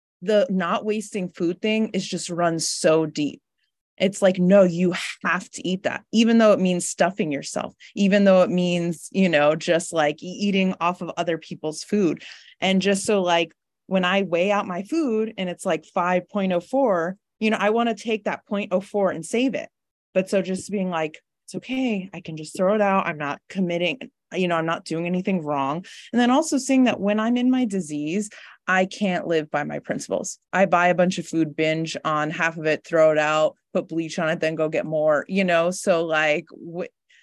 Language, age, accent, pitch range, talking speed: English, 20-39, American, 165-205 Hz, 205 wpm